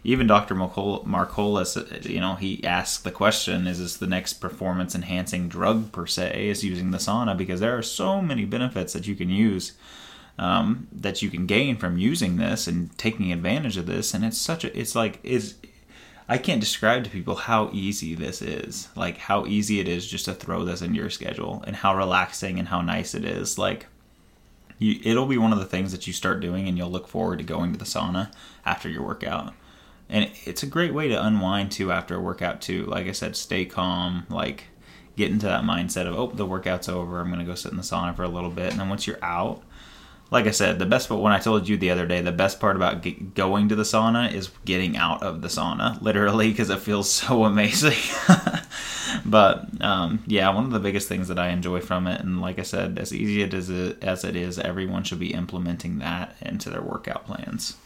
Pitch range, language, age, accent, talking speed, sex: 90-110 Hz, English, 20-39, American, 220 wpm, male